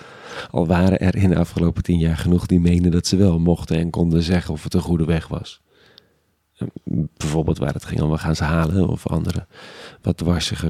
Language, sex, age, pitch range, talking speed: Dutch, male, 40-59, 85-95 Hz, 210 wpm